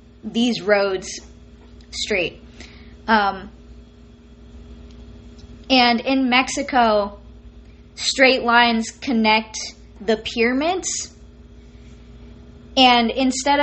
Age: 20-39